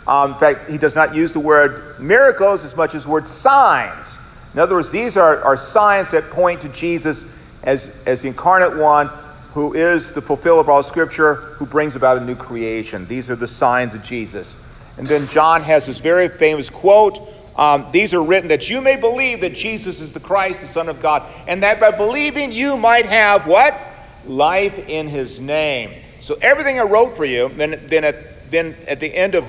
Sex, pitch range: male, 140-200 Hz